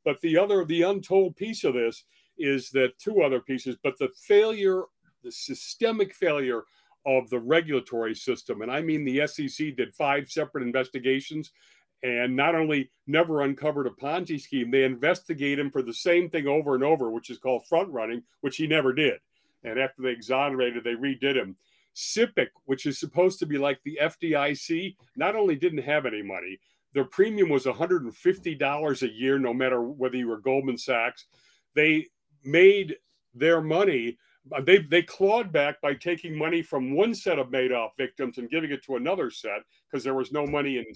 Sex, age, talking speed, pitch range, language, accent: male, 50-69, 180 wpm, 130-170 Hz, English, American